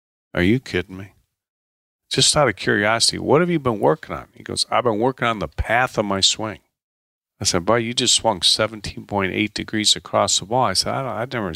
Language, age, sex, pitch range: English, 40-59, male, 95-125 Hz